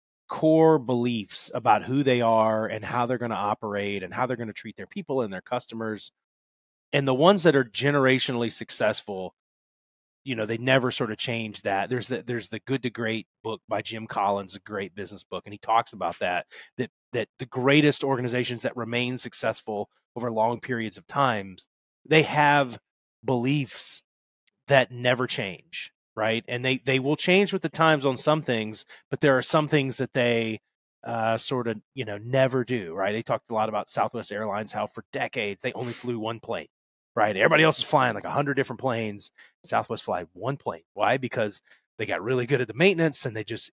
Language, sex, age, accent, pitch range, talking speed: English, male, 30-49, American, 110-135 Hz, 200 wpm